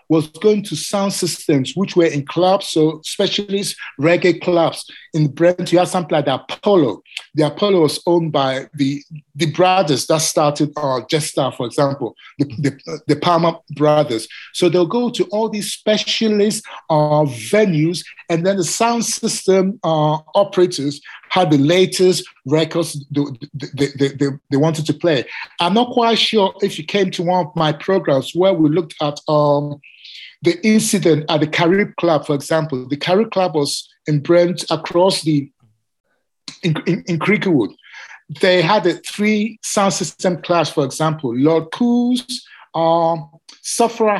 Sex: male